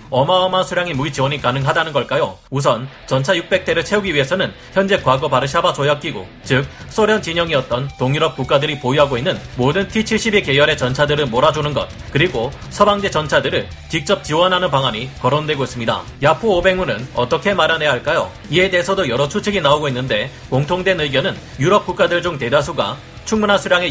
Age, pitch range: 30-49, 130-180 Hz